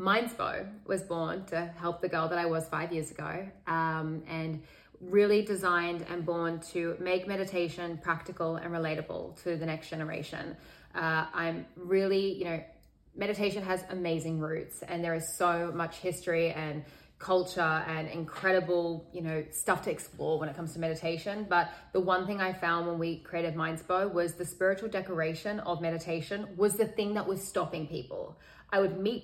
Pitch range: 165-195 Hz